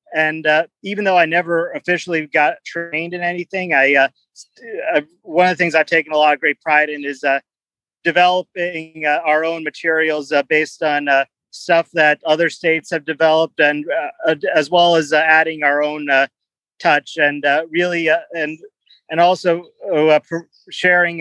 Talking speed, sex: 180 wpm, male